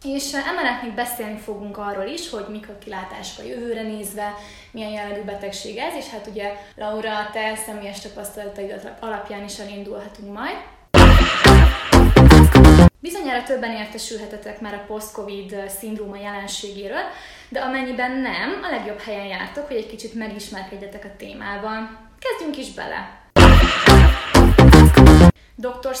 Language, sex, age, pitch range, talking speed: Hungarian, female, 20-39, 205-245 Hz, 125 wpm